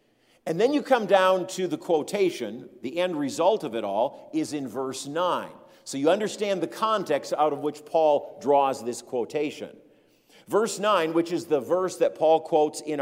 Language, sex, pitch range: English, male, 150-195 Hz